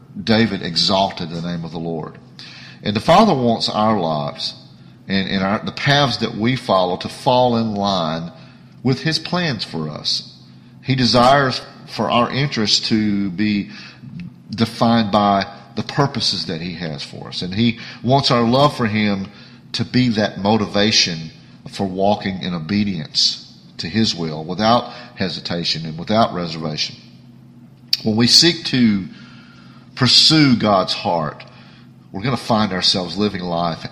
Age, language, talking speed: 40-59, English, 145 wpm